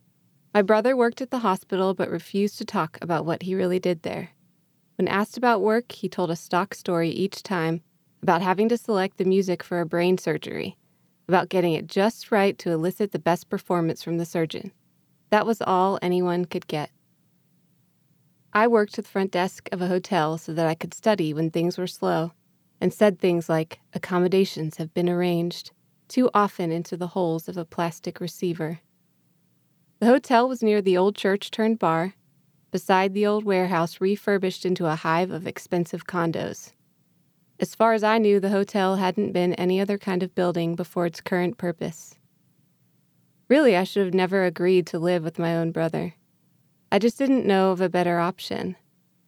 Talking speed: 180 wpm